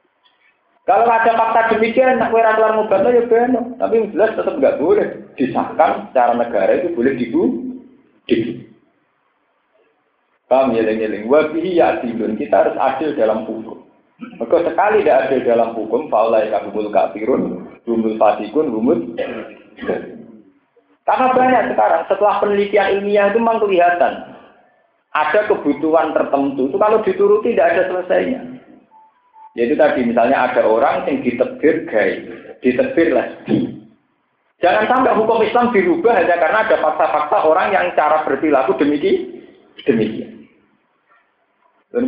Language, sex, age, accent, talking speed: Indonesian, male, 50-69, native, 125 wpm